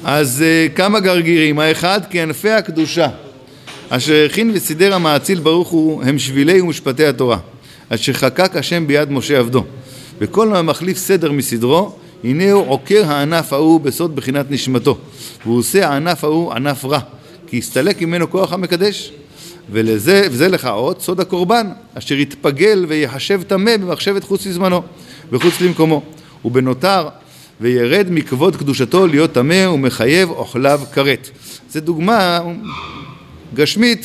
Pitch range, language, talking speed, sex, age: 135-180 Hz, Hebrew, 125 wpm, male, 50-69